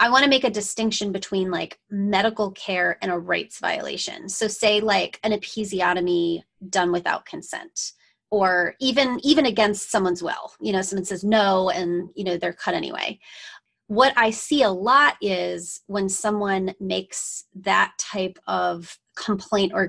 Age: 30-49